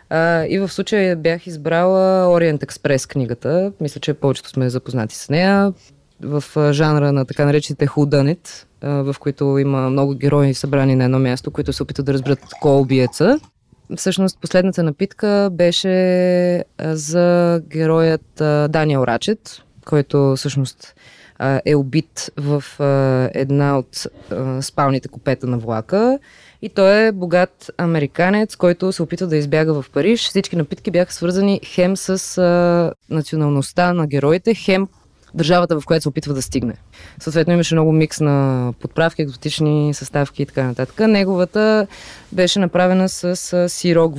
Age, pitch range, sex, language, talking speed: 20-39, 140-185 Hz, female, Bulgarian, 145 wpm